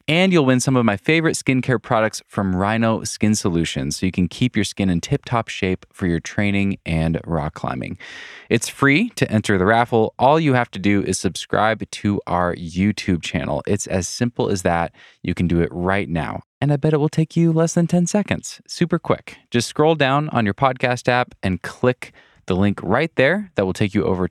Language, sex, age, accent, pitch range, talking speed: English, male, 20-39, American, 95-130 Hz, 215 wpm